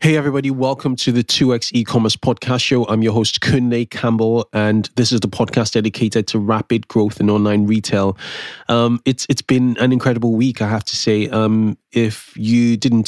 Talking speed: 195 wpm